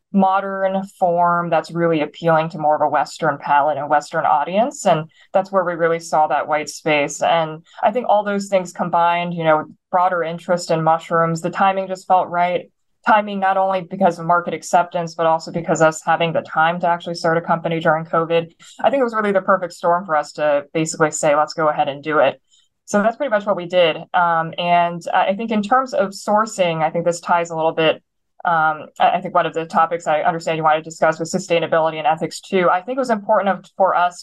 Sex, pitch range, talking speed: female, 160-185 Hz, 225 wpm